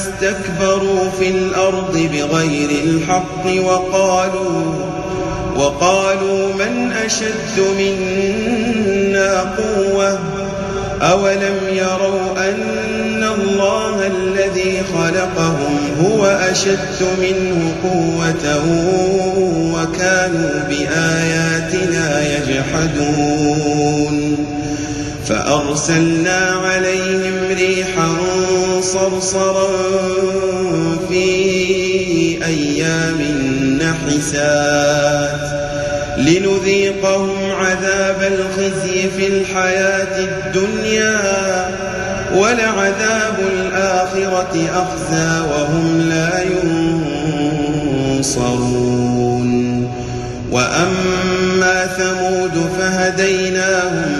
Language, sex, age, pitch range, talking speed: Arabic, male, 30-49, 160-190 Hz, 50 wpm